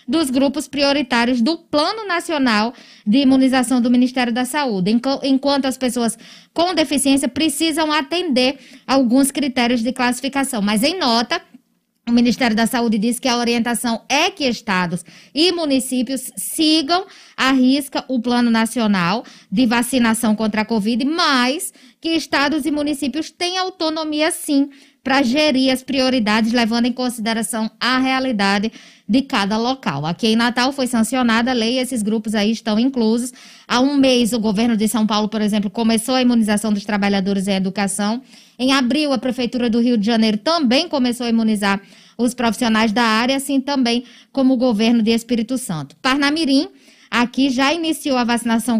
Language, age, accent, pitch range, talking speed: Portuguese, 20-39, Brazilian, 225-270 Hz, 160 wpm